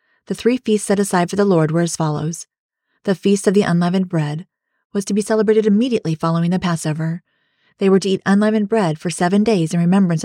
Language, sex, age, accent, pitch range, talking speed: English, female, 30-49, American, 165-205 Hz, 210 wpm